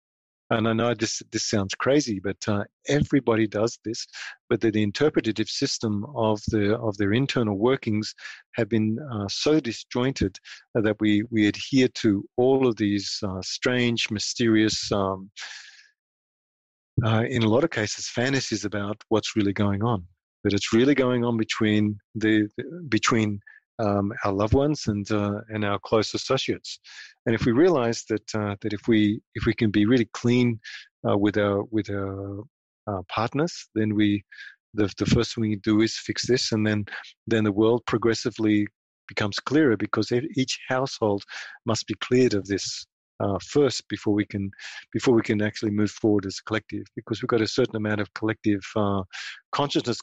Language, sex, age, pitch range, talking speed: English, male, 40-59, 105-120 Hz, 175 wpm